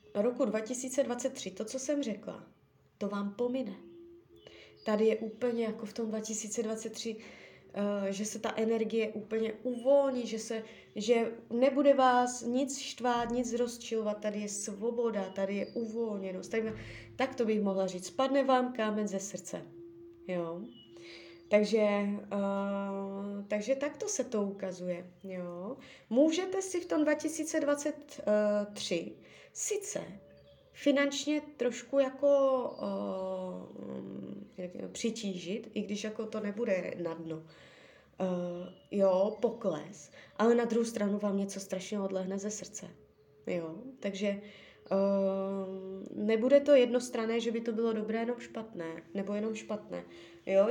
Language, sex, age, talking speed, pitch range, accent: Czech, female, 20-39, 125 wpm, 195-245 Hz, native